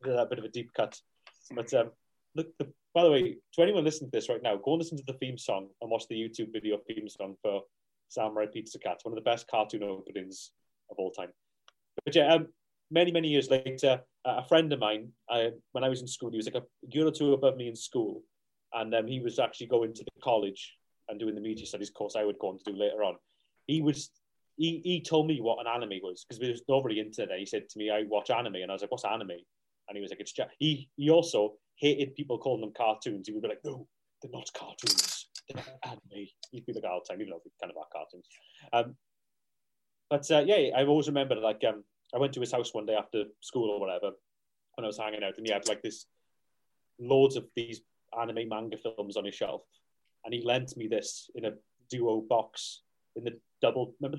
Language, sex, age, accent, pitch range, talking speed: English, male, 30-49, British, 110-145 Hz, 240 wpm